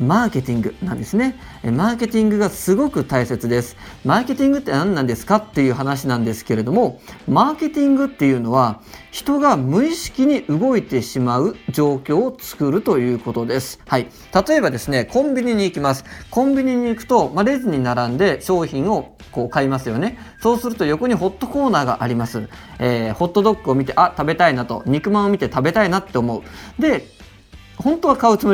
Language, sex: Japanese, male